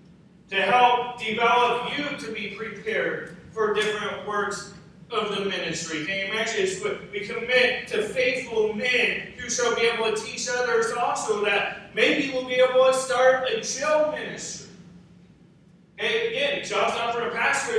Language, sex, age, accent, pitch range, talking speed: English, male, 40-59, American, 175-240 Hz, 155 wpm